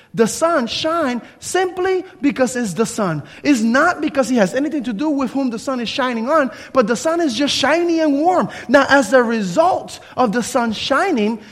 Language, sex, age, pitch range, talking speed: English, male, 30-49, 205-275 Hz, 205 wpm